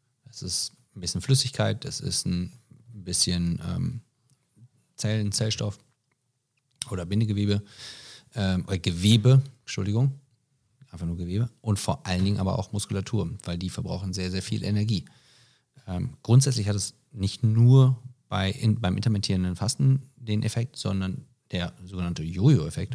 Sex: male